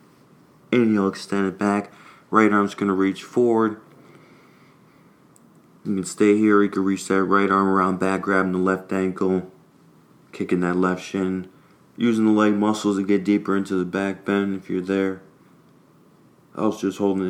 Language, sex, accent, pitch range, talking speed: English, male, American, 95-105 Hz, 165 wpm